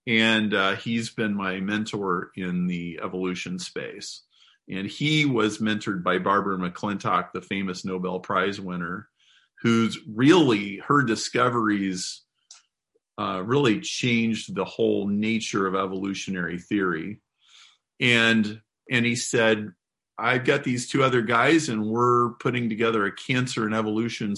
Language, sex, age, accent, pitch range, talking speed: English, male, 40-59, American, 100-120 Hz, 130 wpm